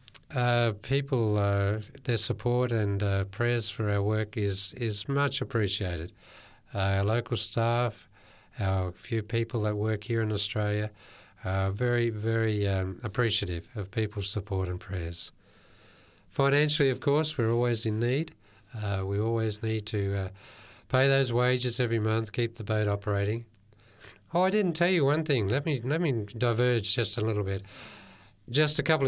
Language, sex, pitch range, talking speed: English, male, 105-130 Hz, 160 wpm